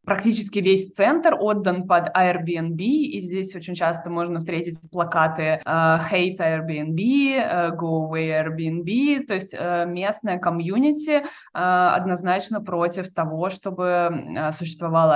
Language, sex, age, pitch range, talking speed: Russian, female, 20-39, 170-205 Hz, 105 wpm